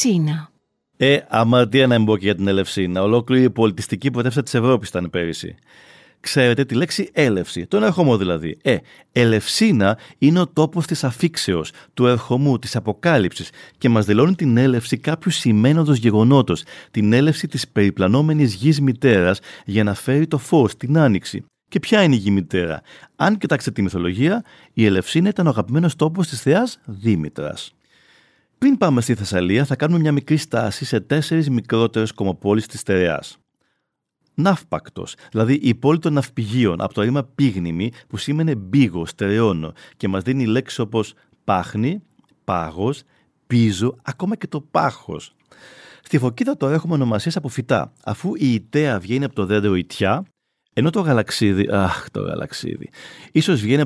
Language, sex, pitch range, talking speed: Greek, male, 105-150 Hz, 155 wpm